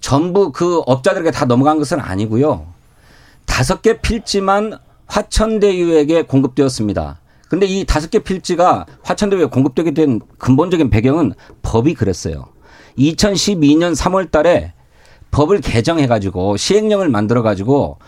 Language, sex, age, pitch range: Korean, male, 40-59, 130-190 Hz